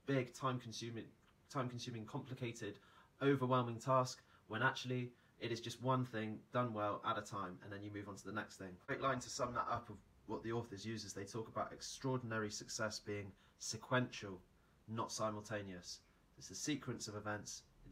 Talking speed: 190 wpm